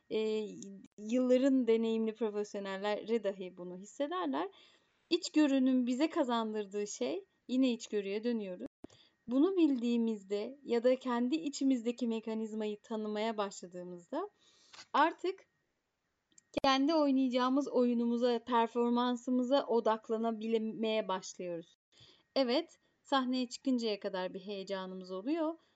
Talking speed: 85 wpm